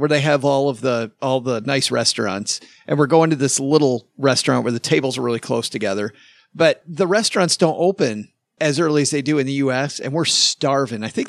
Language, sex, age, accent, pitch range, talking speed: English, male, 40-59, American, 130-170 Hz, 225 wpm